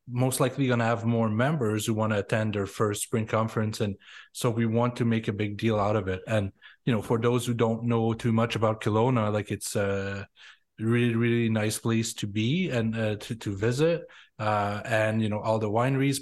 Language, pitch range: English, 110-120 Hz